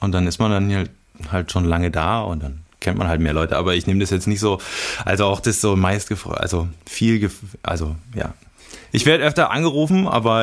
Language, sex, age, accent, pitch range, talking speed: German, male, 20-39, German, 90-115 Hz, 225 wpm